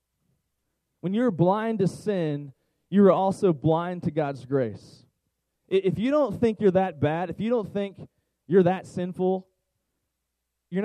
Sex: male